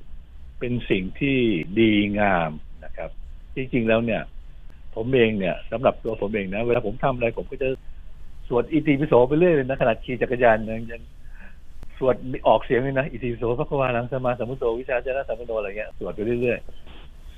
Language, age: Thai, 60-79